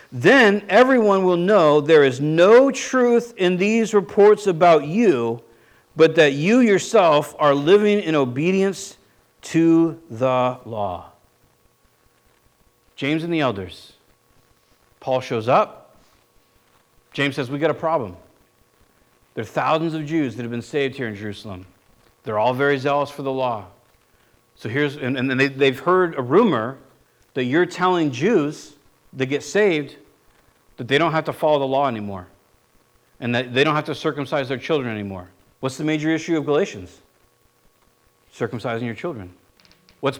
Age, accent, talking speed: 50-69, American, 150 wpm